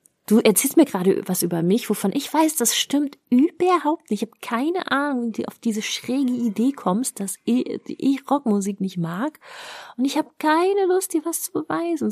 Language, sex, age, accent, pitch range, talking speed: German, female, 30-49, German, 185-270 Hz, 195 wpm